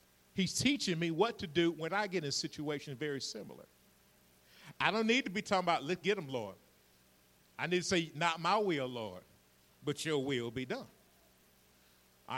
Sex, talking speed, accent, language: male, 185 wpm, American, English